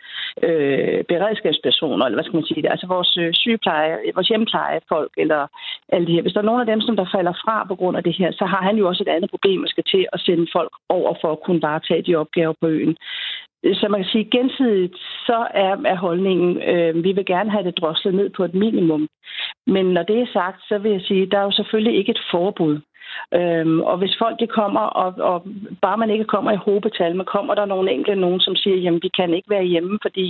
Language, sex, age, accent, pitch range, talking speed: Danish, female, 40-59, native, 175-205 Hz, 240 wpm